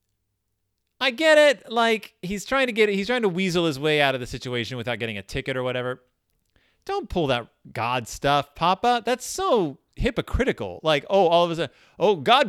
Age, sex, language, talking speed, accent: 30-49, male, English, 195 wpm, American